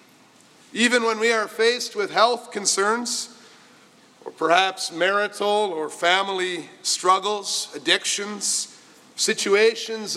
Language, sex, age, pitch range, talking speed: English, male, 50-69, 180-225 Hz, 95 wpm